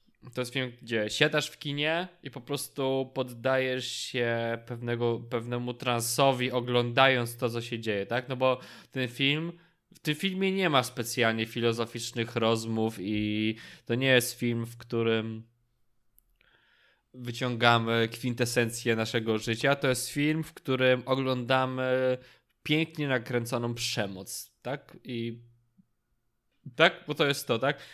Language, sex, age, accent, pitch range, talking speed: Polish, male, 20-39, native, 120-135 Hz, 130 wpm